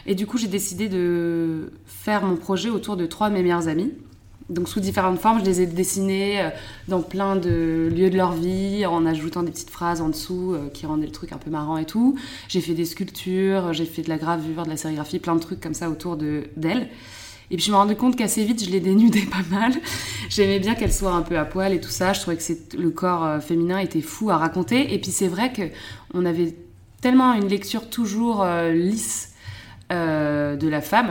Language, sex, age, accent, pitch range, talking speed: French, female, 20-39, French, 160-195 Hz, 225 wpm